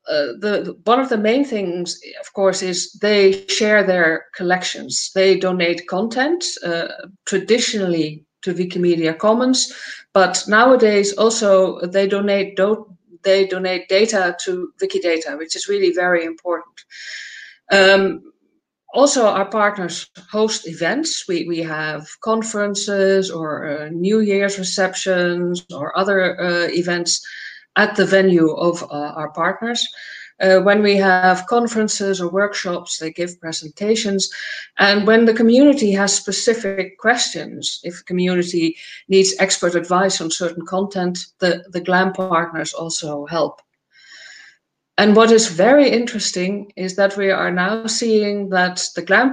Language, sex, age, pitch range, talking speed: Indonesian, female, 50-69, 175-215 Hz, 135 wpm